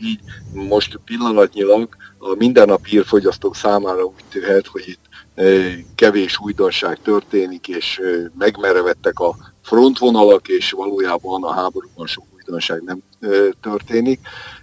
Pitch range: 95-135 Hz